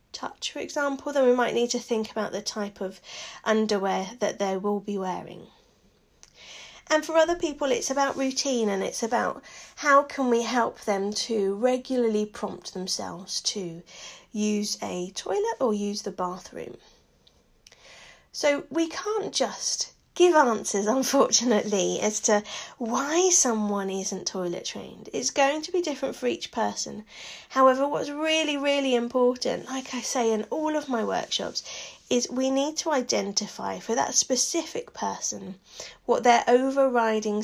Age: 30-49